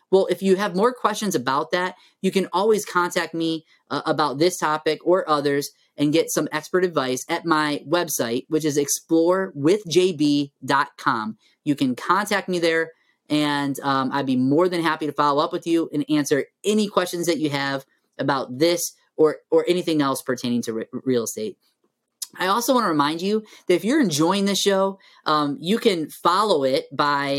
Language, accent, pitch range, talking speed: English, American, 145-180 Hz, 180 wpm